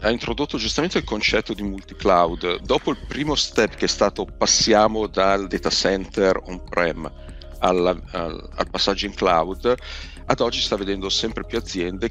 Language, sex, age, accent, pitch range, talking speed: Italian, male, 40-59, native, 80-100 Hz, 165 wpm